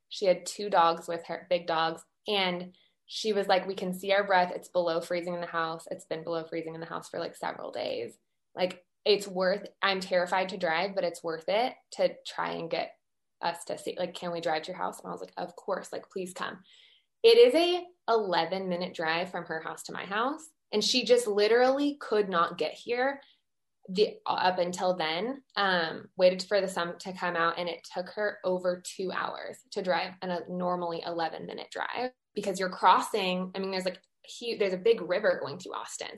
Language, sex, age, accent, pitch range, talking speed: English, female, 20-39, American, 175-215 Hz, 215 wpm